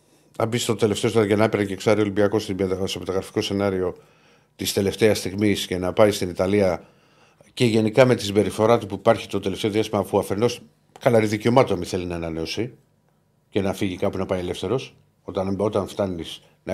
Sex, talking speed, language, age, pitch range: male, 180 wpm, Greek, 50-69, 95-120 Hz